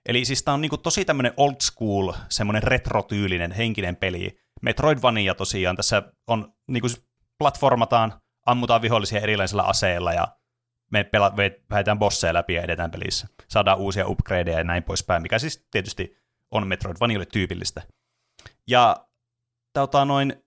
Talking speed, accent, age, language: 140 wpm, native, 30-49, Finnish